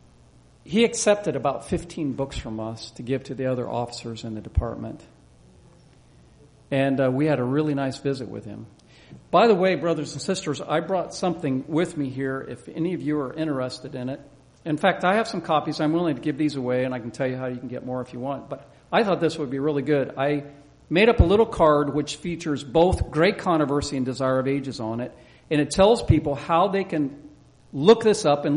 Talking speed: 225 wpm